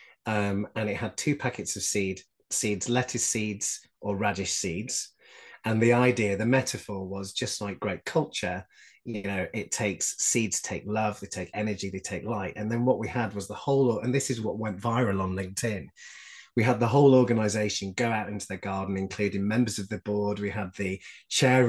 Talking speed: 200 wpm